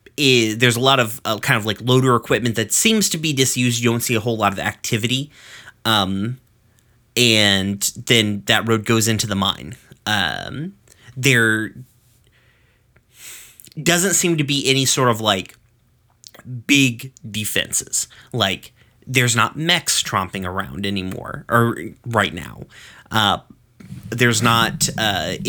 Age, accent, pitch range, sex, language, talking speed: 30-49, American, 105-125 Hz, male, English, 135 wpm